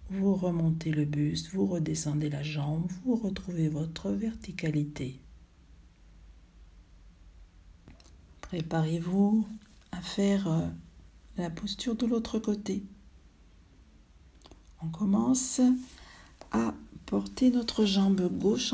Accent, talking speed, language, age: French, 85 wpm, French, 50-69